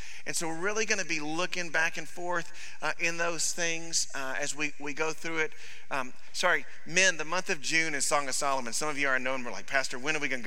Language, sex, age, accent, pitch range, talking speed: English, male, 40-59, American, 145-170 Hz, 250 wpm